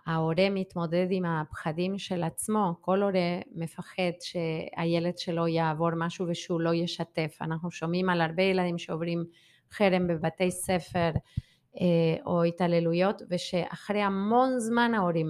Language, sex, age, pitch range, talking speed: Hebrew, female, 30-49, 170-195 Hz, 120 wpm